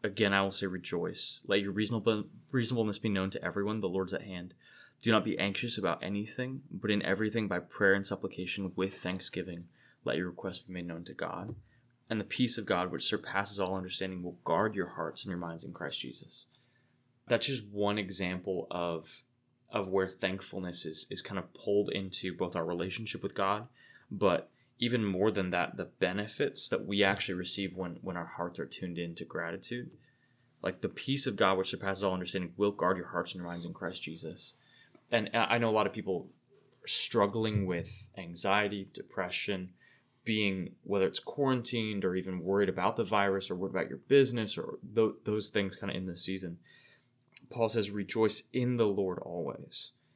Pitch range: 95-115 Hz